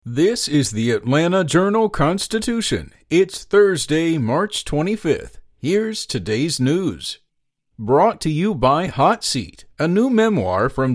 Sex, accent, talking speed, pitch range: male, American, 120 wpm, 135-185 Hz